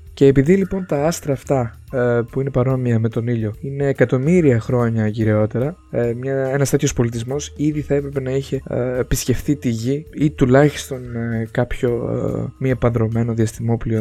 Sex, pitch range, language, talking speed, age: male, 115-155 Hz, Greek, 165 wpm, 20-39